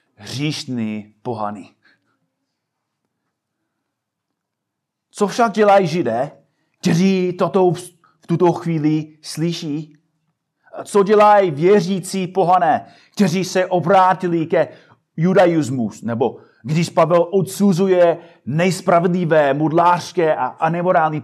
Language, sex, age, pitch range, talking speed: Czech, male, 30-49, 150-200 Hz, 80 wpm